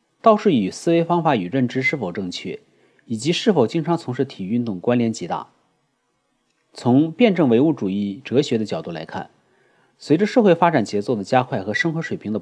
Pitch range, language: 120-180 Hz, Chinese